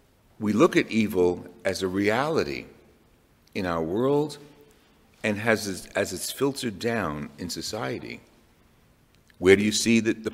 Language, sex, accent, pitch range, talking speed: English, male, American, 100-125 Hz, 140 wpm